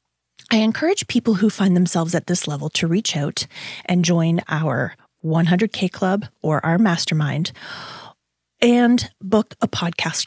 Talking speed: 140 wpm